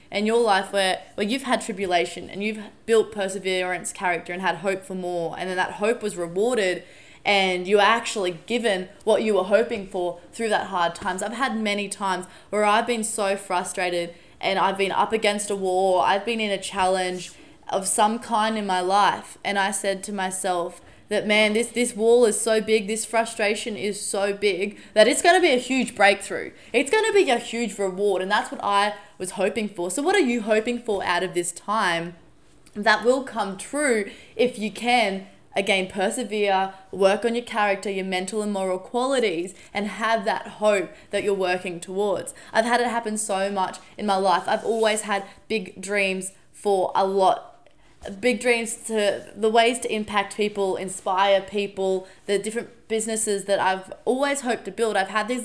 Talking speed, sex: 195 wpm, female